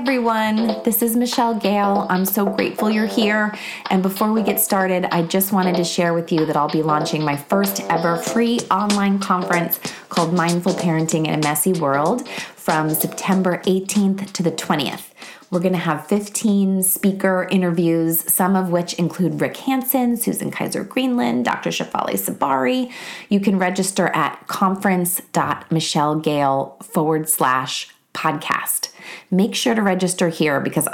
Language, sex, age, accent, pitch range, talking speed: English, female, 20-39, American, 155-200 Hz, 145 wpm